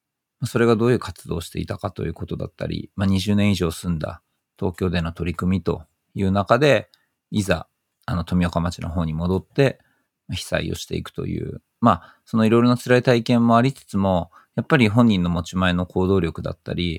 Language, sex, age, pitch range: Japanese, male, 40-59, 85-110 Hz